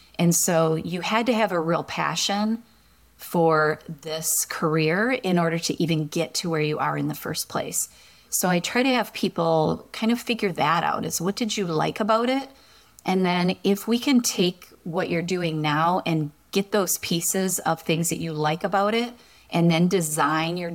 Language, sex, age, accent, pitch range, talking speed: English, female, 30-49, American, 160-195 Hz, 195 wpm